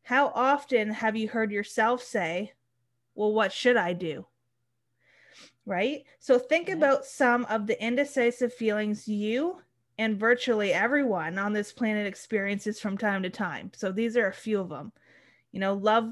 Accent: American